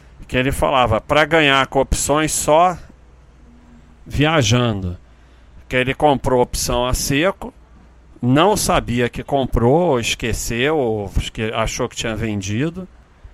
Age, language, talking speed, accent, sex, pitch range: 50-69, Portuguese, 115 wpm, Brazilian, male, 110-145 Hz